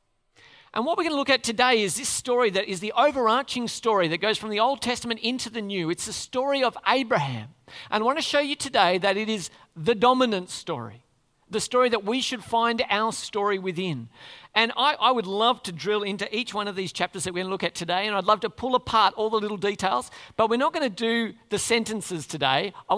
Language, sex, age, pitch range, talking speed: English, male, 40-59, 175-235 Hz, 240 wpm